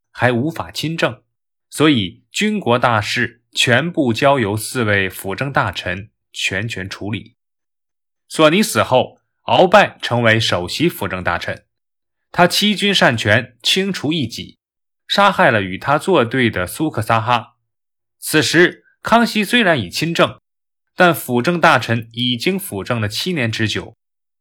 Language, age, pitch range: Chinese, 20-39, 110-165 Hz